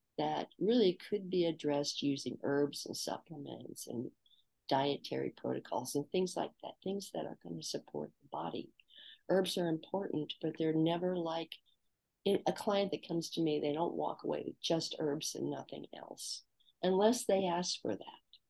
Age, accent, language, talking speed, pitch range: 50-69, American, English, 165 wpm, 150-180 Hz